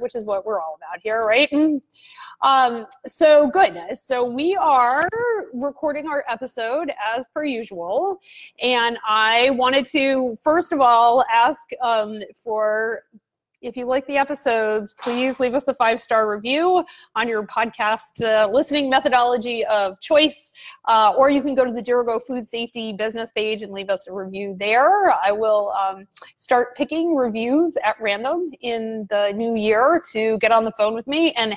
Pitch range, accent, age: 205-270 Hz, American, 30-49